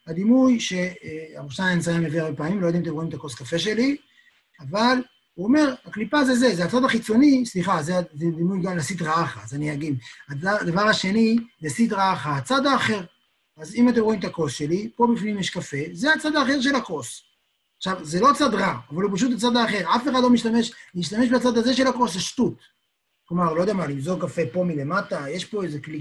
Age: 30-49